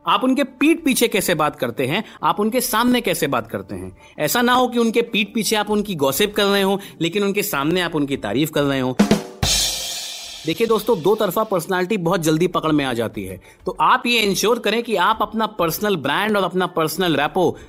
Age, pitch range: 30-49, 145-215 Hz